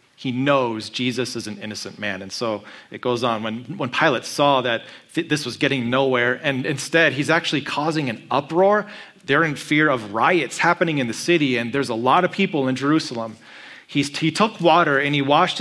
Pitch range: 125-155 Hz